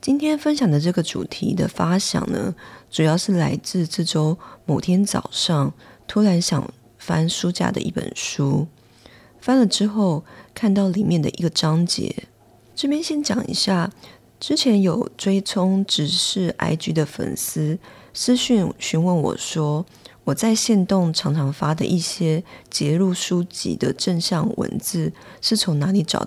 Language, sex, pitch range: English, female, 160-205 Hz